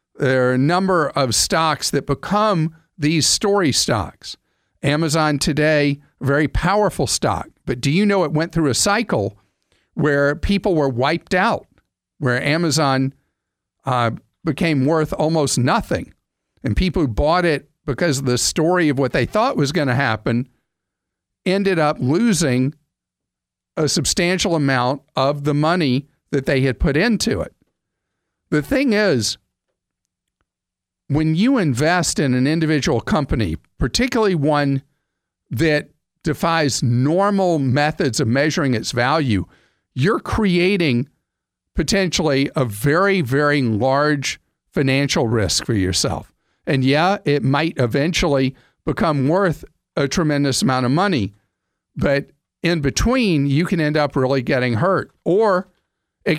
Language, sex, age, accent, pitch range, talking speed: English, male, 50-69, American, 135-165 Hz, 130 wpm